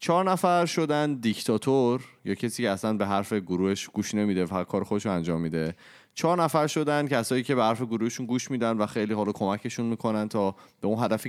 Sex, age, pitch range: male, 30-49, 110-160 Hz